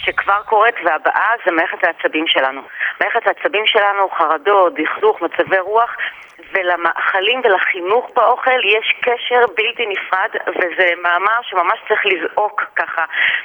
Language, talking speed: Hebrew, 115 wpm